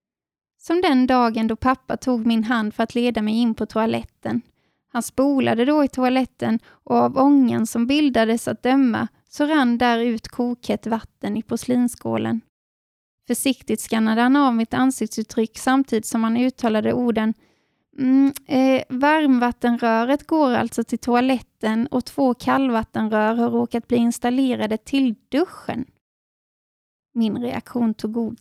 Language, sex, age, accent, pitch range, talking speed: Swedish, female, 20-39, native, 225-260 Hz, 140 wpm